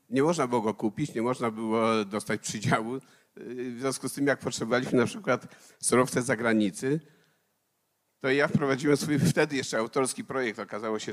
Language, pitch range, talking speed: Polish, 110-145 Hz, 165 wpm